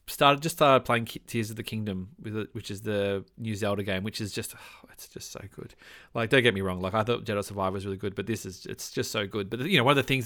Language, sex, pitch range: English, male, 105-130 Hz